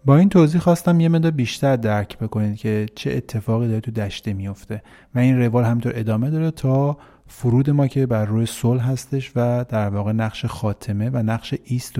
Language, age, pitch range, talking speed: Persian, 30-49, 105-130 Hz, 190 wpm